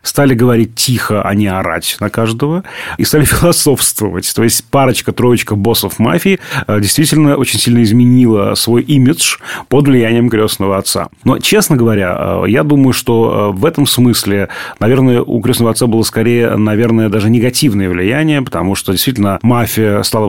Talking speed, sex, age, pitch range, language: 150 wpm, male, 30-49, 95-120 Hz, Russian